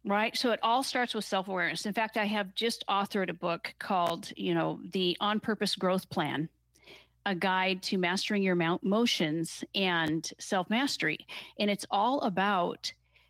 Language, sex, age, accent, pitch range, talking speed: English, female, 40-59, American, 190-245 Hz, 160 wpm